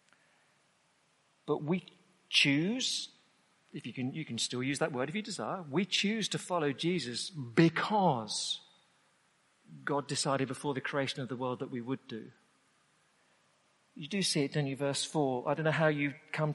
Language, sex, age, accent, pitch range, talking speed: English, male, 50-69, British, 130-175 Hz, 165 wpm